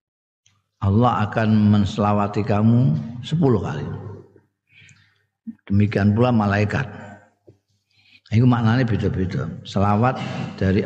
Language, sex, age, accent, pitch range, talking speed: Indonesian, male, 50-69, native, 100-130 Hz, 70 wpm